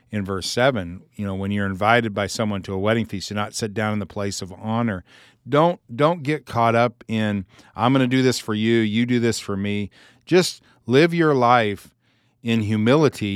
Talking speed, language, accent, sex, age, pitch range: 210 wpm, English, American, male, 40-59, 100-130 Hz